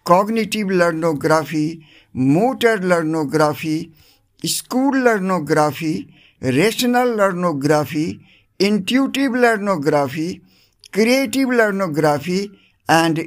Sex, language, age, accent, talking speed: male, English, 60-79, Indian, 60 wpm